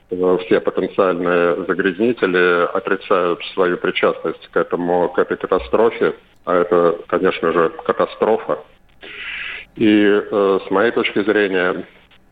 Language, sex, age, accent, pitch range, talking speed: Russian, male, 40-59, native, 95-110 Hz, 105 wpm